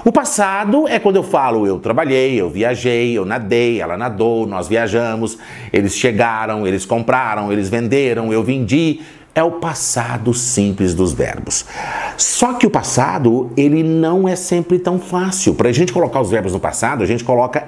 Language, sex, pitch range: Portuguese, male, 115-165 Hz